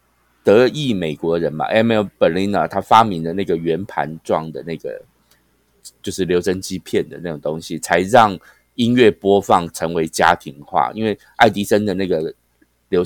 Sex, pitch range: male, 85-130 Hz